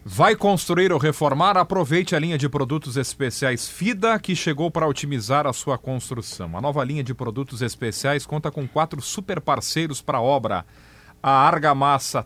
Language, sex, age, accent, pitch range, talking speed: Portuguese, male, 40-59, Brazilian, 115-155 Hz, 165 wpm